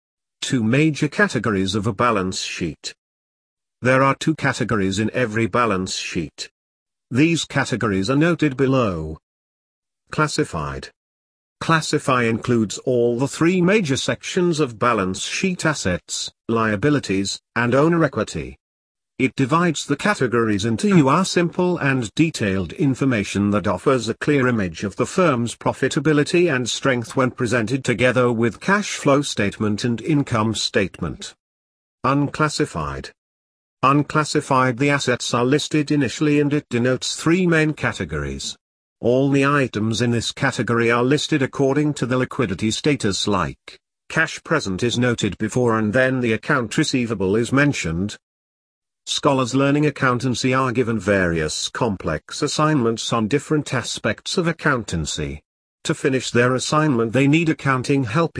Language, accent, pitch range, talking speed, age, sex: English, British, 105-150 Hz, 130 wpm, 50-69, male